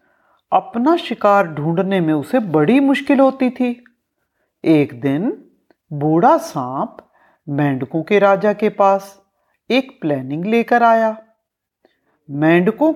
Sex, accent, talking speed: female, native, 105 wpm